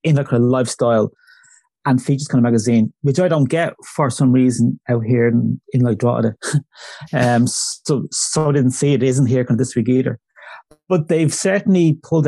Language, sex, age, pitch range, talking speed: English, male, 30-49, 120-145 Hz, 195 wpm